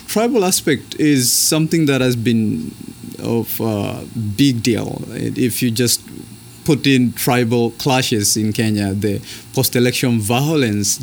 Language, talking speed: English, 130 wpm